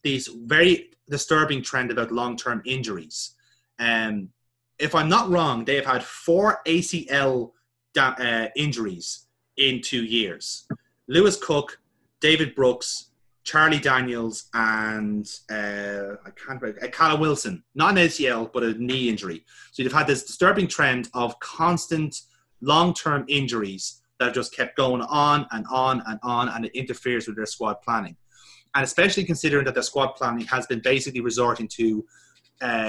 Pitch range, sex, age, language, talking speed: 115-150 Hz, male, 30-49, English, 155 wpm